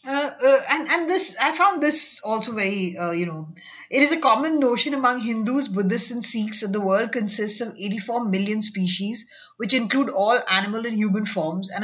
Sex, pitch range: female, 190-255 Hz